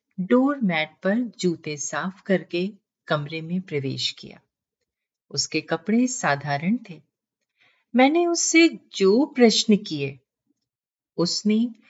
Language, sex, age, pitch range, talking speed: Hindi, female, 50-69, 155-245 Hz, 100 wpm